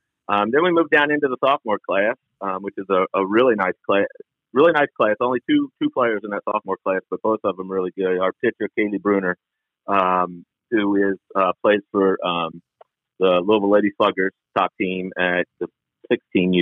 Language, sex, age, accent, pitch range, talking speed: English, male, 40-59, American, 90-115 Hz, 195 wpm